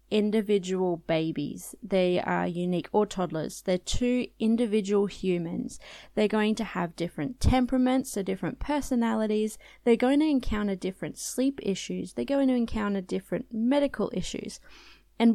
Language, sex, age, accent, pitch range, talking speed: English, female, 20-39, Australian, 185-225 Hz, 140 wpm